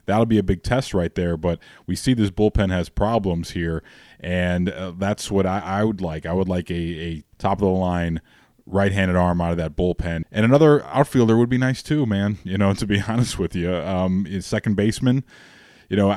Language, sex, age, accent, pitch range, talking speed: English, male, 20-39, American, 90-105 Hz, 220 wpm